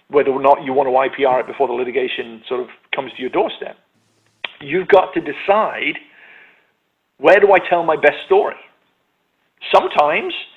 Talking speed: 165 wpm